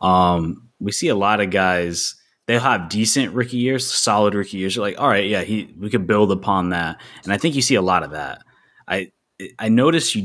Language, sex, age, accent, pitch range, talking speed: English, male, 20-39, American, 90-105 Hz, 230 wpm